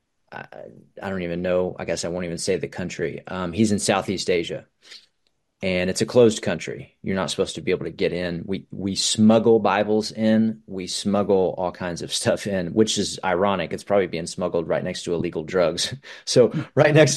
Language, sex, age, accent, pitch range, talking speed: English, male, 30-49, American, 90-110 Hz, 205 wpm